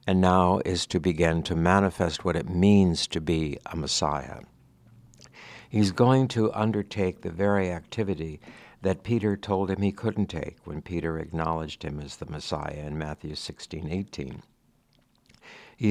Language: English